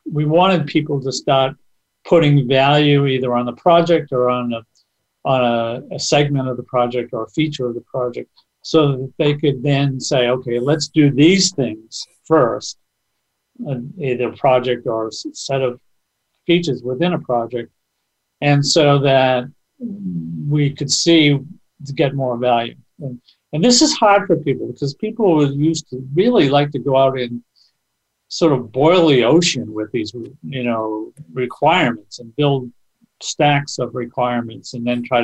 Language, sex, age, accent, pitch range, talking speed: English, male, 50-69, American, 125-155 Hz, 165 wpm